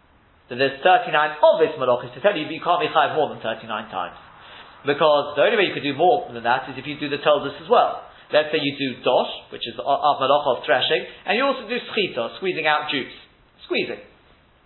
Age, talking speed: 40-59, 225 wpm